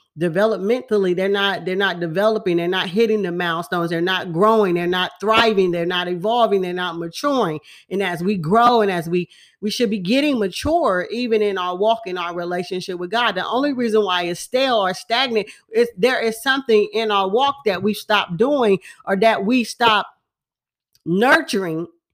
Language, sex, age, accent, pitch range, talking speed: English, female, 40-59, American, 190-250 Hz, 185 wpm